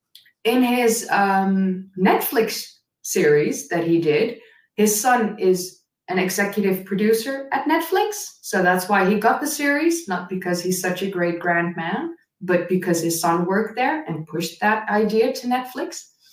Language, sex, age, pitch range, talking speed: English, female, 20-39, 185-250 Hz, 160 wpm